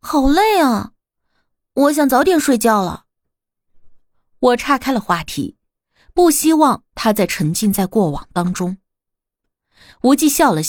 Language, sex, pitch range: Chinese, female, 190-285 Hz